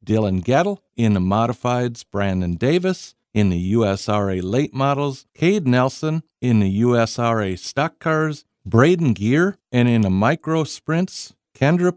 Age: 50-69